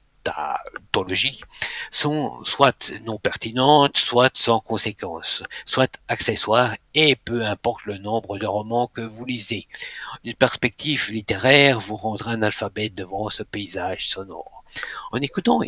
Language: French